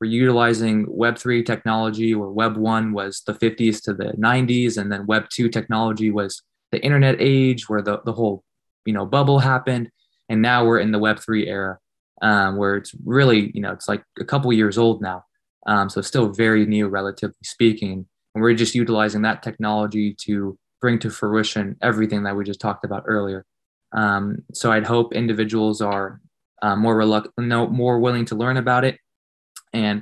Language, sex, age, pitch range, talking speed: English, male, 20-39, 105-115 Hz, 180 wpm